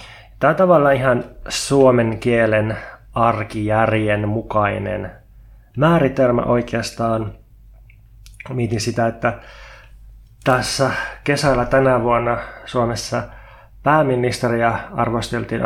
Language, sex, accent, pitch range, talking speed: Finnish, male, native, 110-125 Hz, 75 wpm